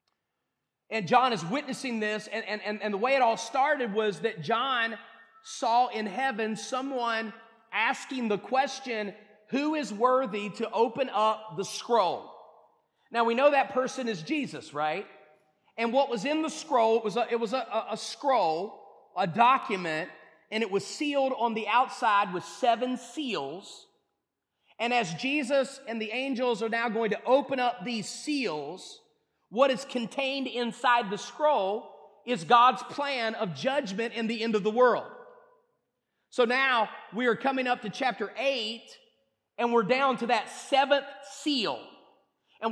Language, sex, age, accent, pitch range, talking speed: English, male, 30-49, American, 215-270 Hz, 160 wpm